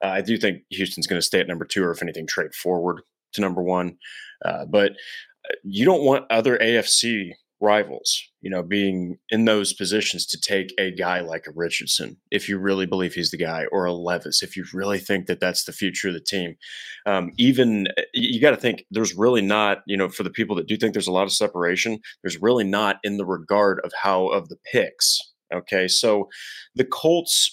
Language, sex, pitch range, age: English, male, 95-115 Hz, 30-49